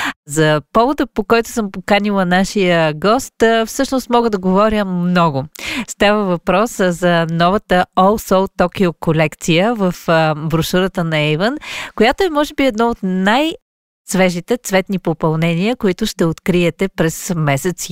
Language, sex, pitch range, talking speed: Bulgarian, female, 170-230 Hz, 130 wpm